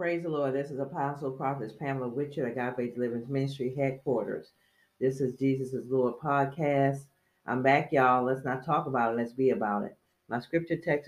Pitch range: 130-155 Hz